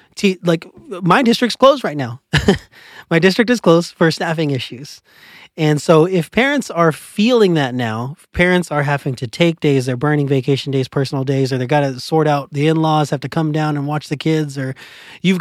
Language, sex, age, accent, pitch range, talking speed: English, male, 30-49, American, 135-170 Hz, 195 wpm